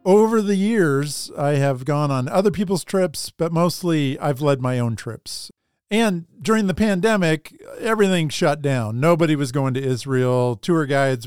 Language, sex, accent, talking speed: English, male, American, 165 wpm